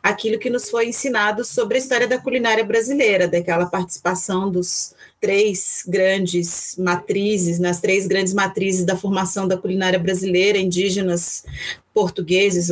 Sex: female